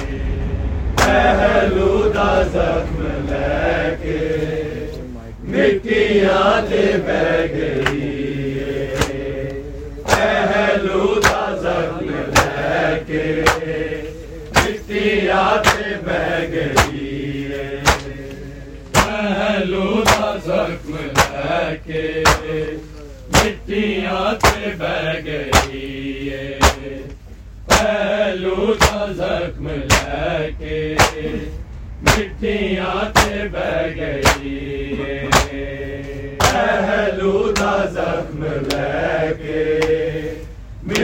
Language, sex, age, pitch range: Urdu, male, 40-59, 140-195 Hz